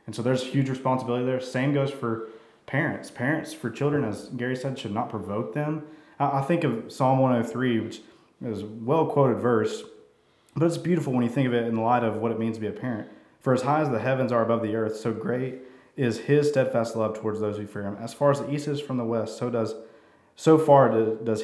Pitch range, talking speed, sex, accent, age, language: 110-130 Hz, 235 wpm, male, American, 20-39, English